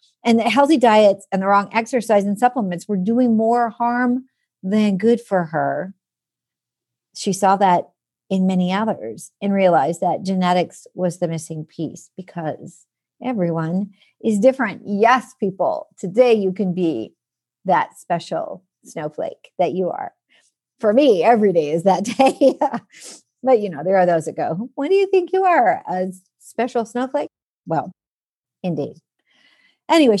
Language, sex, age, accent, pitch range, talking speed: English, female, 50-69, American, 180-235 Hz, 150 wpm